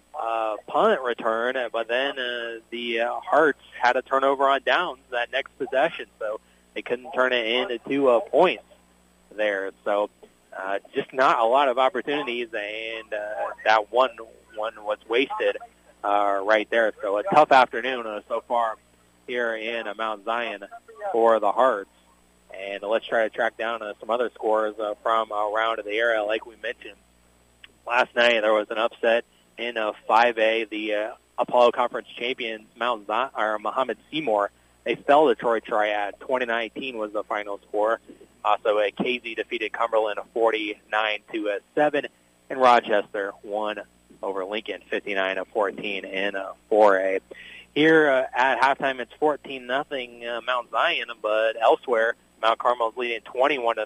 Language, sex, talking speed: English, male, 160 wpm